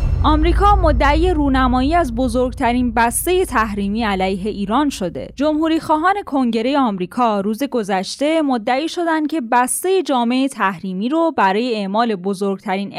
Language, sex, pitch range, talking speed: Persian, female, 200-275 Hz, 120 wpm